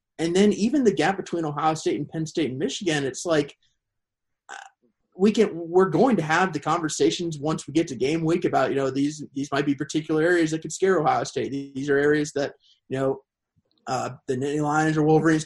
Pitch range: 135-165 Hz